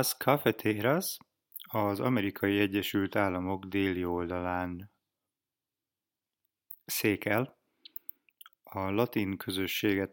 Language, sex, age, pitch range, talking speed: English, male, 30-49, 95-110 Hz, 70 wpm